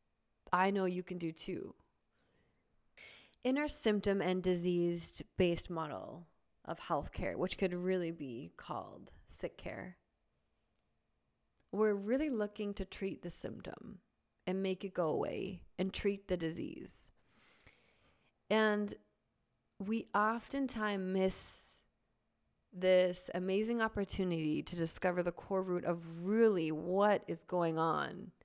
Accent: American